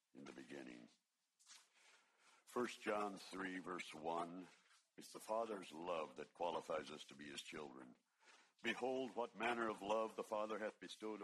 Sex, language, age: male, English, 60-79